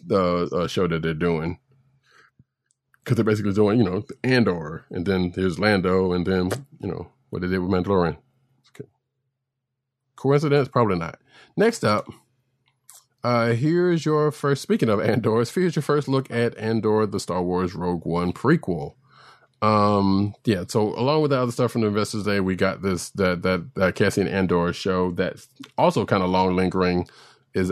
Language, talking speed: English, 170 wpm